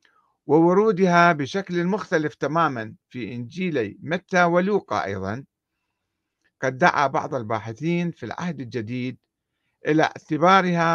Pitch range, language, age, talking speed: 115-165 Hz, Arabic, 50-69, 100 wpm